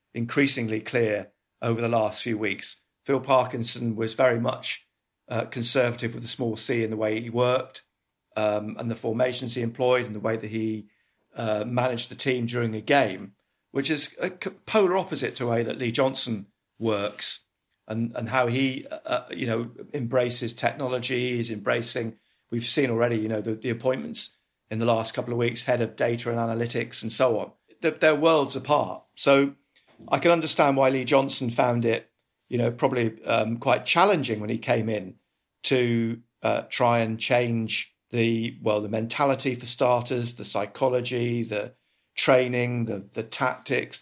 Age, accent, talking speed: 50-69, British, 175 wpm